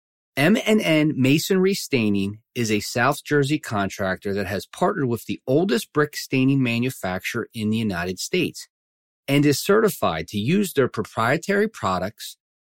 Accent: American